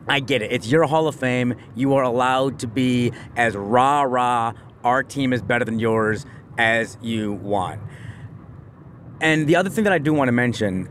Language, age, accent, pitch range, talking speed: English, 30-49, American, 115-140 Hz, 185 wpm